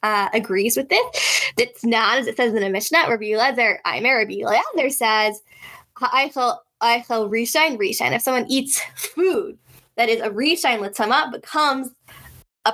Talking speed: 150 wpm